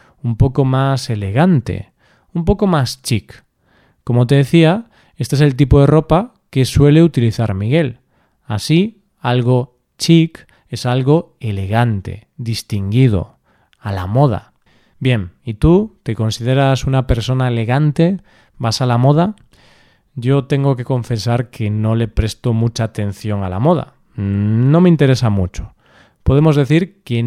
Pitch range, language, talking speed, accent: 115-150 Hz, Spanish, 140 wpm, Spanish